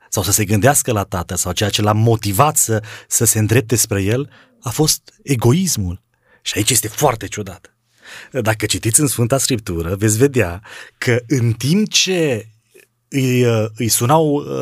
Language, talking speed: Romanian, 160 wpm